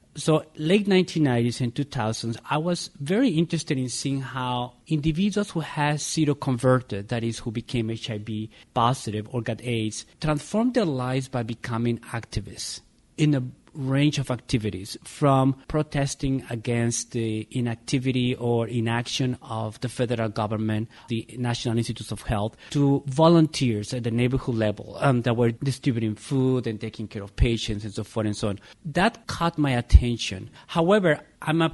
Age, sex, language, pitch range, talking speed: 40-59, male, English, 110-140 Hz, 155 wpm